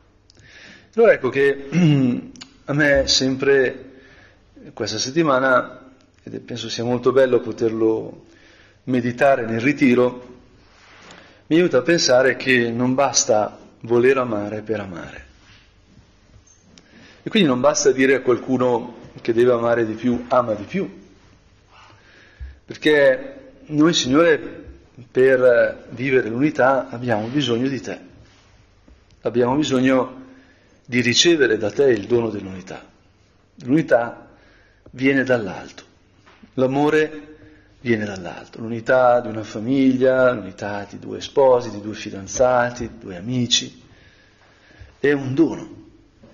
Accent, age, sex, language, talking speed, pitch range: native, 40-59, male, Italian, 110 wpm, 105-130 Hz